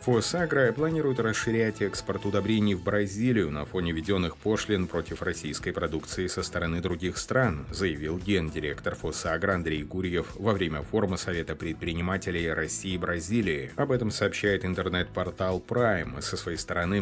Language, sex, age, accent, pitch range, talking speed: Russian, male, 30-49, native, 85-100 Hz, 140 wpm